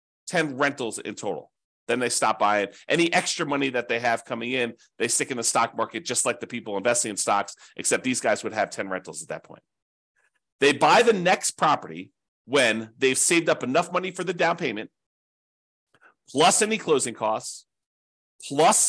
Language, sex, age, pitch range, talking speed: English, male, 40-59, 115-170 Hz, 185 wpm